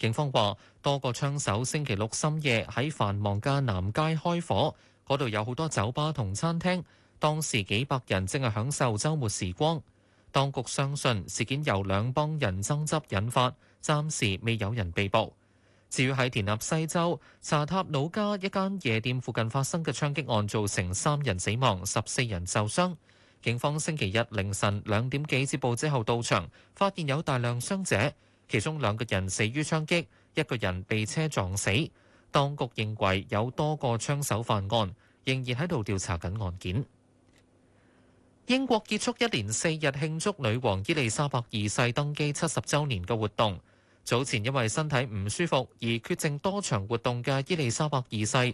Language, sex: Chinese, male